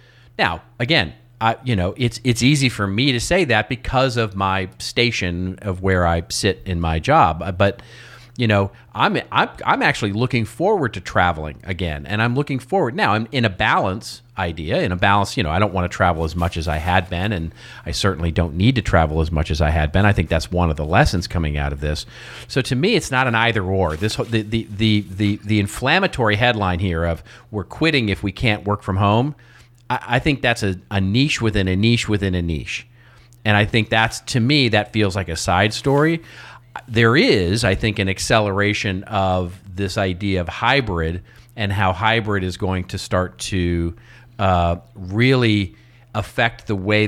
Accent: American